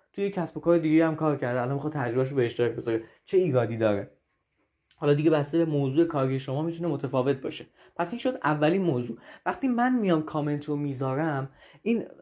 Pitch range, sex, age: 135-175 Hz, male, 20-39